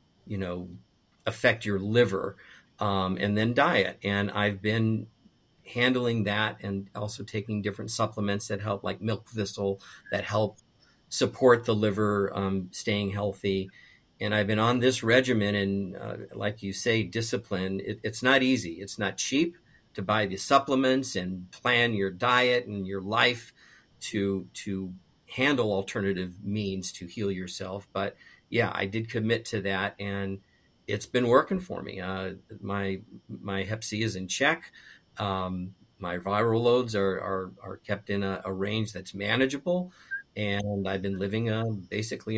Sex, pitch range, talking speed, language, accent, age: male, 100-115 Hz, 155 wpm, English, American, 50-69